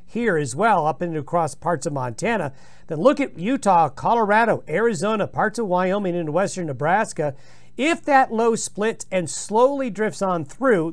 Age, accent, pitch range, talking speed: 50-69, American, 170-235 Hz, 165 wpm